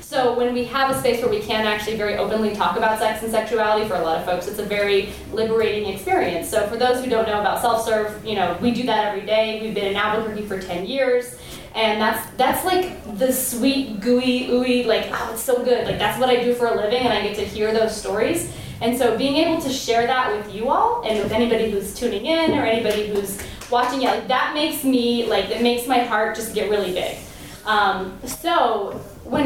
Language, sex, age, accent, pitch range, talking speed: English, female, 20-39, American, 215-265 Hz, 235 wpm